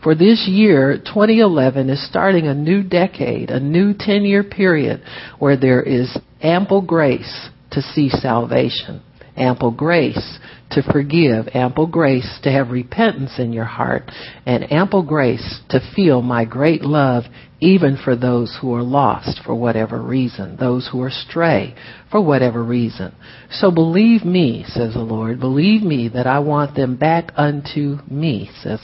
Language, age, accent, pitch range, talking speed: English, 60-79, American, 120-150 Hz, 150 wpm